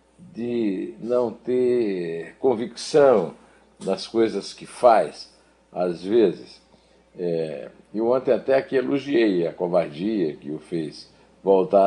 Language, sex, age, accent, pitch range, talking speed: Portuguese, male, 50-69, Brazilian, 85-125 Hz, 105 wpm